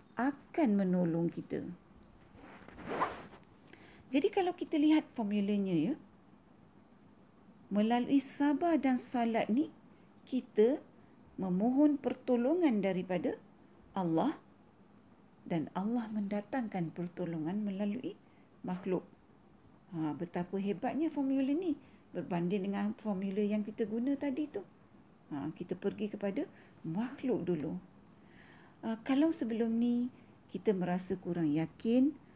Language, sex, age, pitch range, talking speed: Malay, female, 40-59, 190-255 Hz, 95 wpm